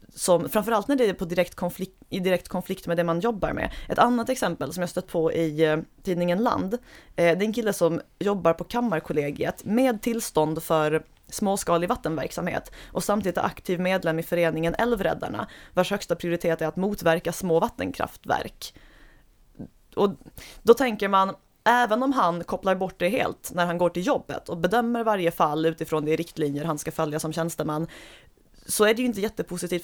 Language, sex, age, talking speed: Swedish, female, 20-39, 170 wpm